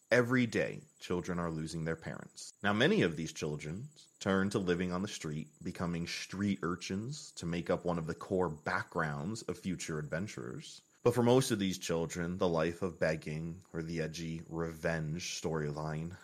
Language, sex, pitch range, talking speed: English, male, 85-115 Hz, 175 wpm